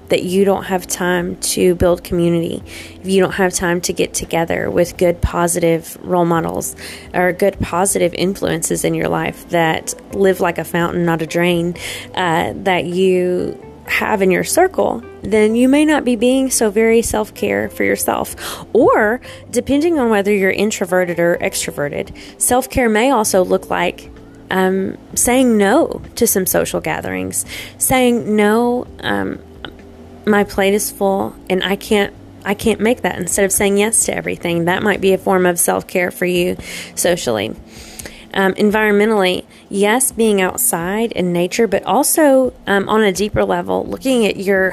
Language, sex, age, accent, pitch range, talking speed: English, female, 20-39, American, 175-210 Hz, 160 wpm